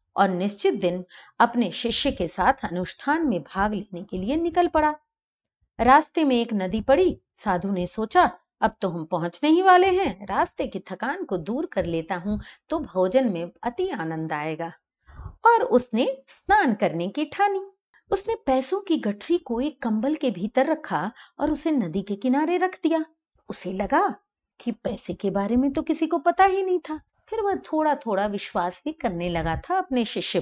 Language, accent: Hindi, native